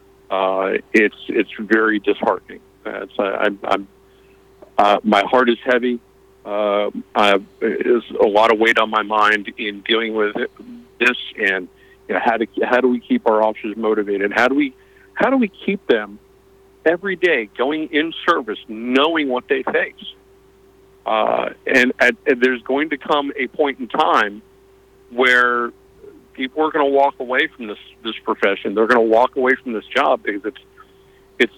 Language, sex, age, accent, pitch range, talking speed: English, male, 50-69, American, 110-140 Hz, 175 wpm